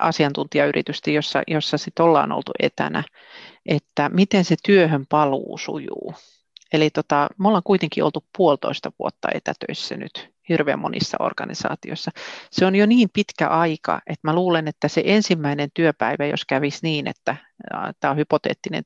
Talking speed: 150 wpm